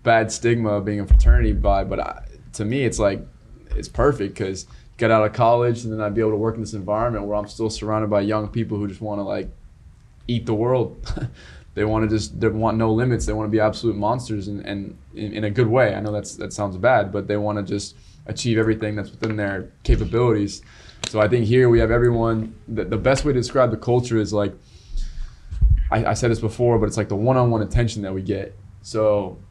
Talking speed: 240 wpm